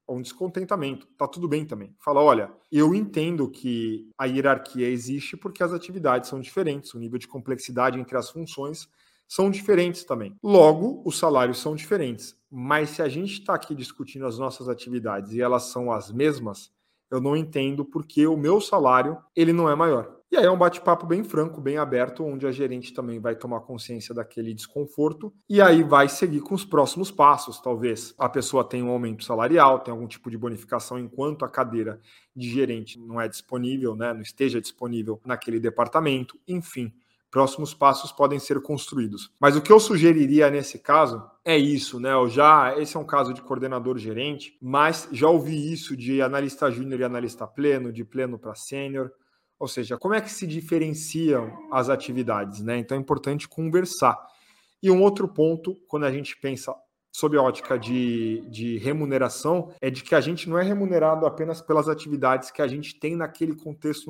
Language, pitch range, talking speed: Portuguese, 125-160 Hz, 185 wpm